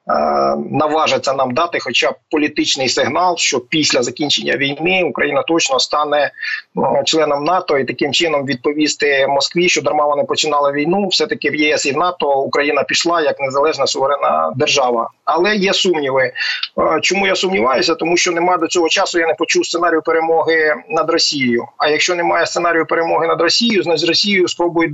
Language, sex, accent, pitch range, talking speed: Ukrainian, male, native, 145-175 Hz, 165 wpm